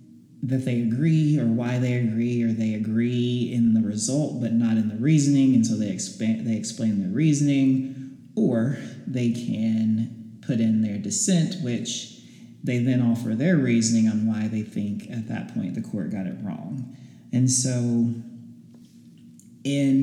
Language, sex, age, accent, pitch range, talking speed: English, male, 30-49, American, 110-125 Hz, 160 wpm